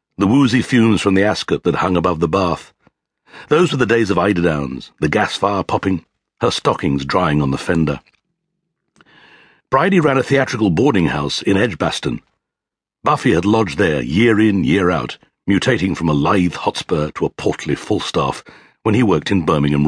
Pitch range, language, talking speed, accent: 90-140 Hz, English, 170 wpm, British